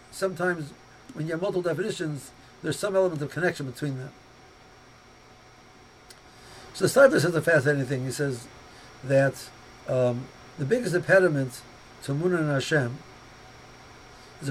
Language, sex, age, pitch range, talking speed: English, male, 60-79, 130-165 Hz, 130 wpm